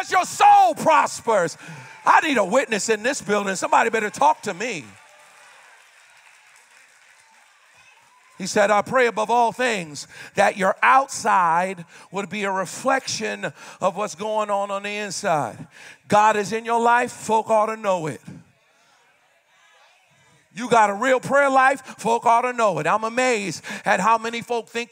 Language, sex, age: English, male, 50-69